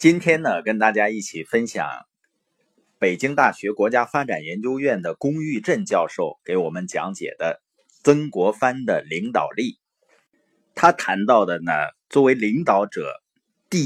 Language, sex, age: Chinese, male, 30-49